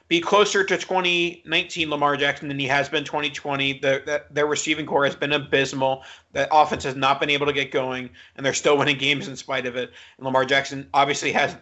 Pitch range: 135-160 Hz